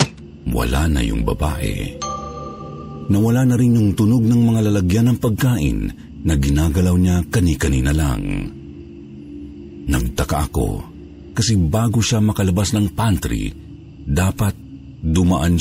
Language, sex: Filipino, male